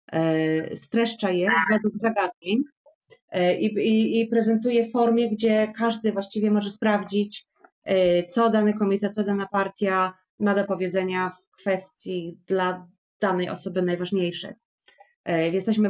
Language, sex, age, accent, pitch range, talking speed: English, female, 30-49, Polish, 185-225 Hz, 115 wpm